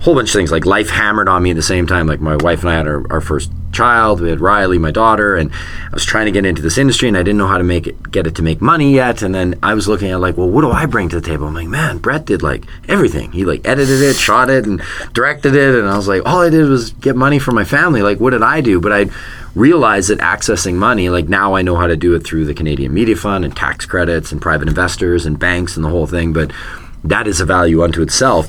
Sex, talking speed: male, 290 wpm